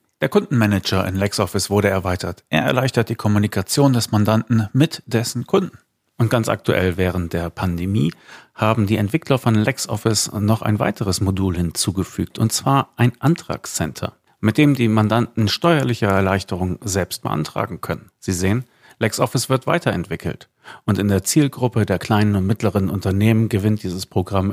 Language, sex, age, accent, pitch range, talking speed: German, male, 40-59, German, 100-125 Hz, 150 wpm